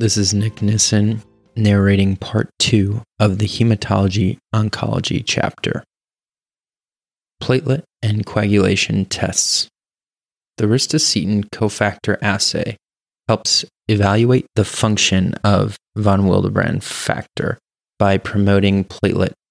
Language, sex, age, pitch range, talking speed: English, male, 20-39, 95-110 Hz, 95 wpm